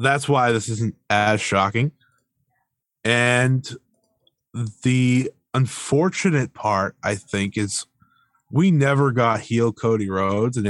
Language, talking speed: English, 110 wpm